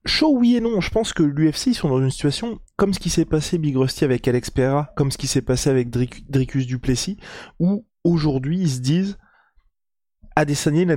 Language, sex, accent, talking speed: French, male, French, 215 wpm